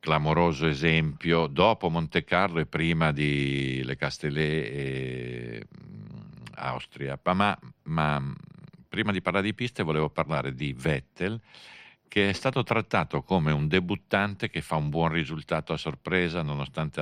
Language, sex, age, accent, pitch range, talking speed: Italian, male, 50-69, native, 70-95 Hz, 135 wpm